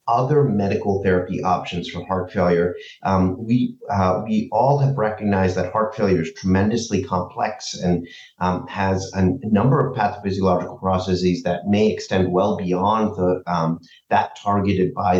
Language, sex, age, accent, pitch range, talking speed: English, male, 30-49, American, 90-125 Hz, 155 wpm